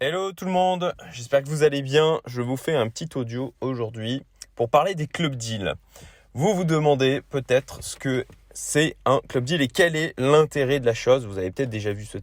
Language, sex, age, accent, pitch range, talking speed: French, male, 20-39, French, 110-155 Hz, 215 wpm